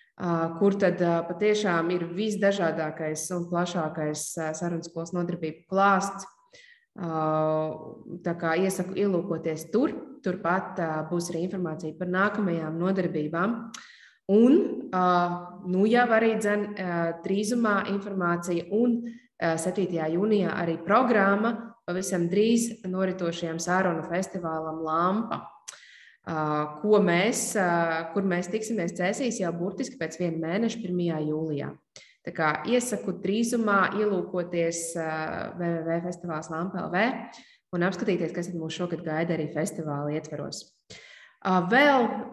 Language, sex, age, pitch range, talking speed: English, female, 20-39, 165-205 Hz, 95 wpm